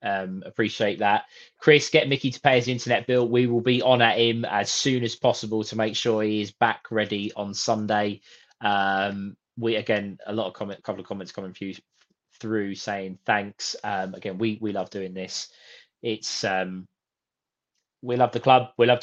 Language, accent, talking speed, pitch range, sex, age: English, British, 190 wpm, 105-125 Hz, male, 20-39